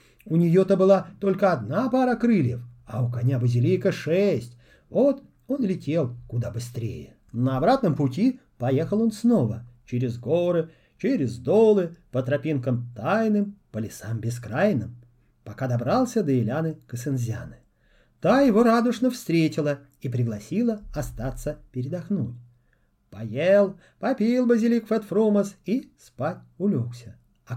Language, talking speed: Russian, 120 wpm